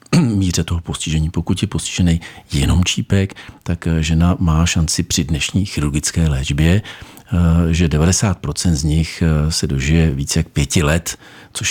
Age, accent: 50-69, native